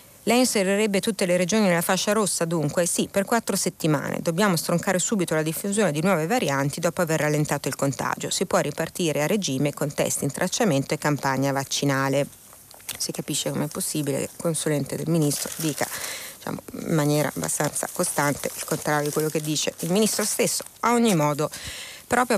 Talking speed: 175 wpm